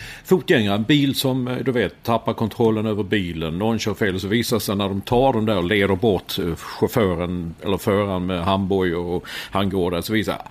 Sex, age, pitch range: male, 50-69, 95-115 Hz